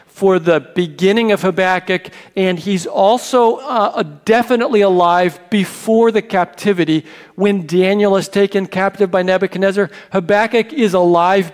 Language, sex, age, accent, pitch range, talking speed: English, male, 50-69, American, 160-200 Hz, 125 wpm